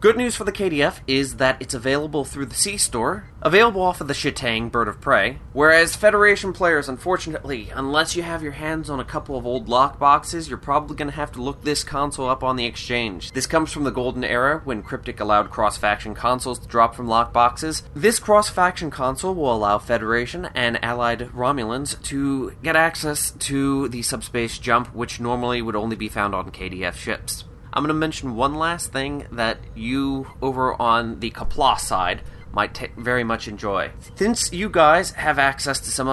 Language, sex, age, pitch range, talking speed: English, male, 20-39, 115-145 Hz, 190 wpm